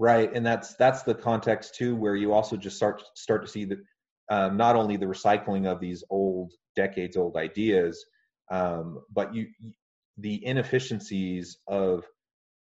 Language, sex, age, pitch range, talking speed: English, male, 30-49, 90-115 Hz, 160 wpm